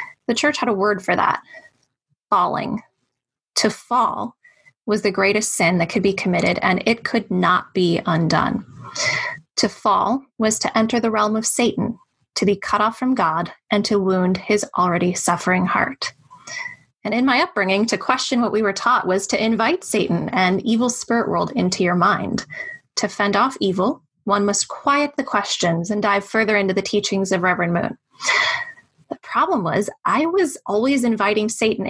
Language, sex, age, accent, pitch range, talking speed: English, female, 20-39, American, 195-235 Hz, 175 wpm